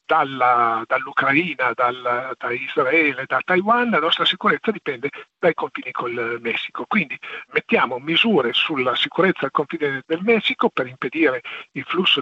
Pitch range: 145-230 Hz